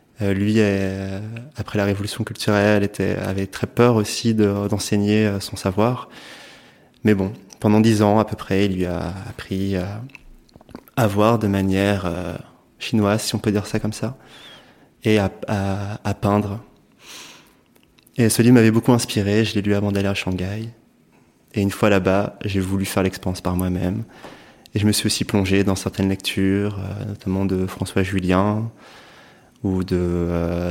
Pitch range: 95-110 Hz